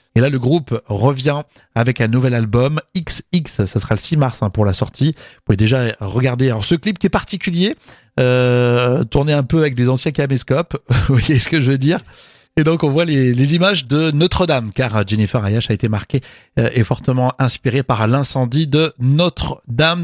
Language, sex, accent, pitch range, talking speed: French, male, French, 120-155 Hz, 200 wpm